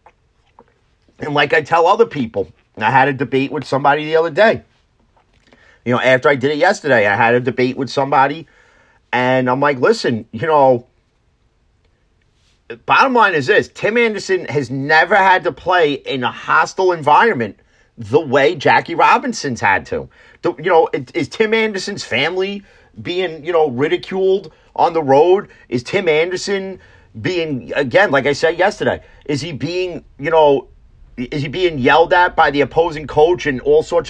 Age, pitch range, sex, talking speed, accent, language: 30-49, 120-180 Hz, male, 165 wpm, American, English